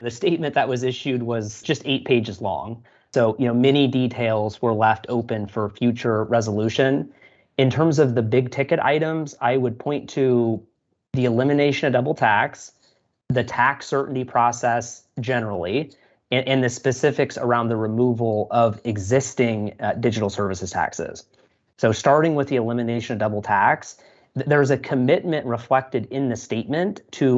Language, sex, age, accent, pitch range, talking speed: English, male, 30-49, American, 115-135 Hz, 160 wpm